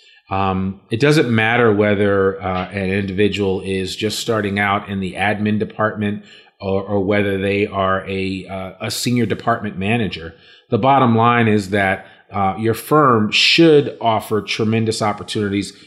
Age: 30-49